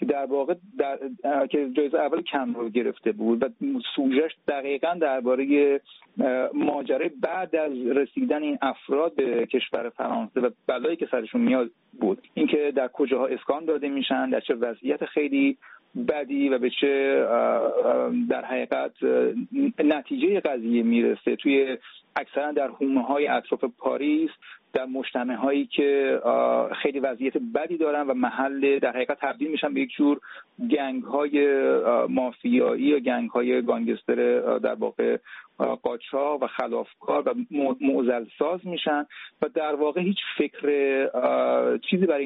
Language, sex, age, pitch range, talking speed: Persian, male, 40-59, 130-150 Hz, 130 wpm